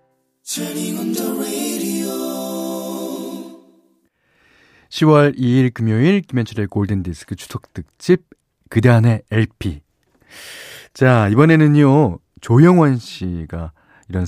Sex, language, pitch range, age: male, Korean, 95-140 Hz, 40-59